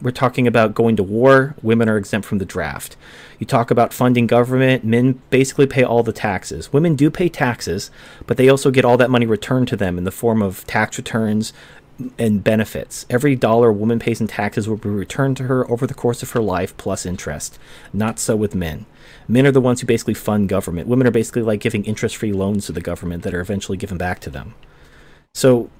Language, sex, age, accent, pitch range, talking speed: English, male, 30-49, American, 105-130 Hz, 220 wpm